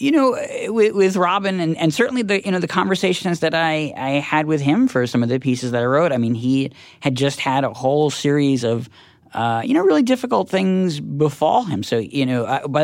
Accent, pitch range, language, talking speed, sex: American, 115-155 Hz, English, 225 wpm, male